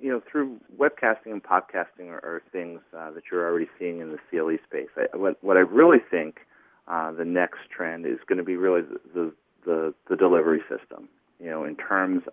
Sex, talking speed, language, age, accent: male, 215 wpm, English, 40-59, American